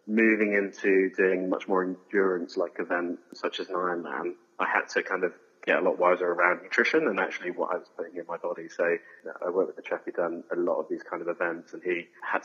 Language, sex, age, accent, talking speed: English, male, 30-49, British, 245 wpm